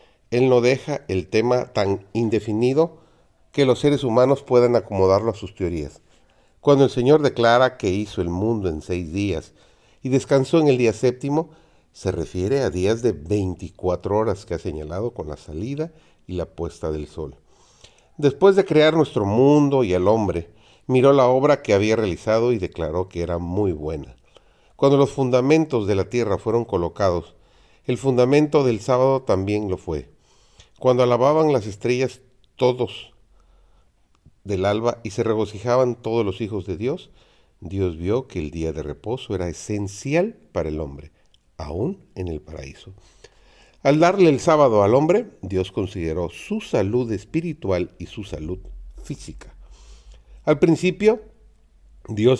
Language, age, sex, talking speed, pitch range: Spanish, 40-59, male, 155 wpm, 90-135 Hz